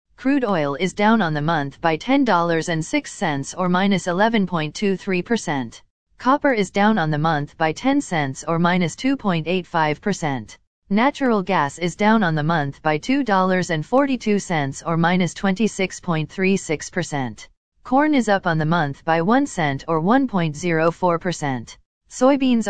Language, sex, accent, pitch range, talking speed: English, female, American, 160-215 Hz, 125 wpm